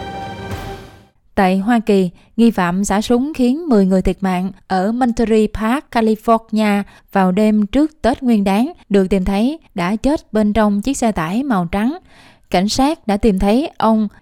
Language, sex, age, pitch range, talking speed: Vietnamese, female, 20-39, 190-230 Hz, 170 wpm